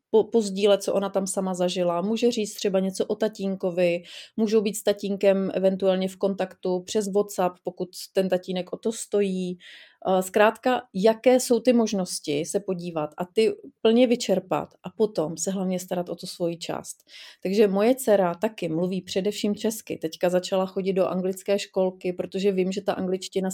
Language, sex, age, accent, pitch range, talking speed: Czech, female, 30-49, native, 185-205 Hz, 170 wpm